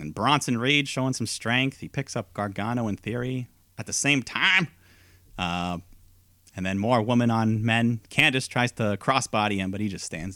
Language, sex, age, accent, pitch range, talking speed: English, male, 30-49, American, 90-130 Hz, 185 wpm